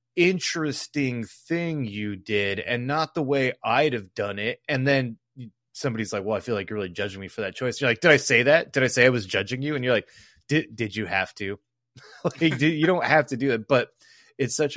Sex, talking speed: male, 240 wpm